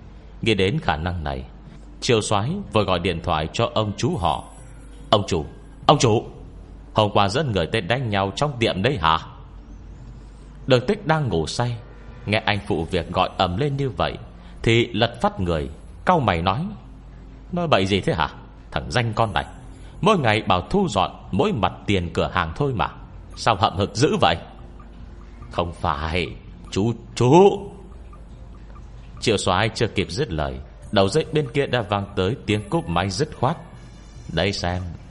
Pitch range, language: 85-120 Hz, Vietnamese